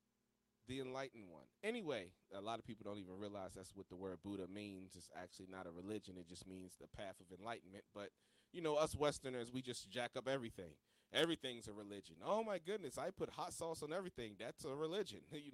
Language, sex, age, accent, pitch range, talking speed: English, male, 30-49, American, 100-135 Hz, 210 wpm